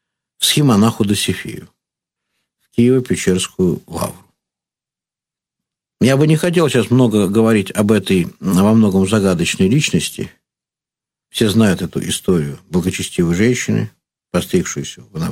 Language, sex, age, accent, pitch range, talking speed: Russian, male, 50-69, native, 95-125 Hz, 105 wpm